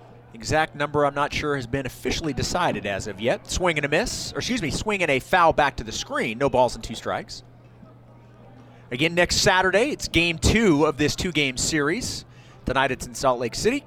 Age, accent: 30-49, American